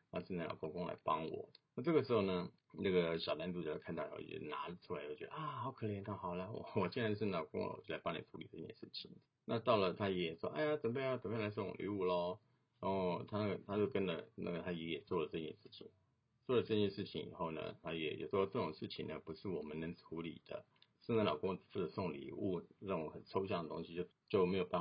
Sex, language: male, Chinese